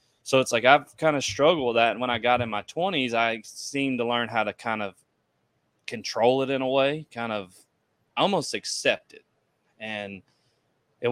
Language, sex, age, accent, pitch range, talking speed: English, male, 20-39, American, 105-130 Hz, 195 wpm